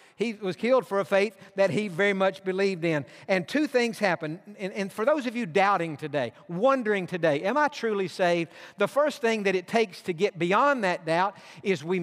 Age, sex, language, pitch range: 50-69, male, English, 175-235 Hz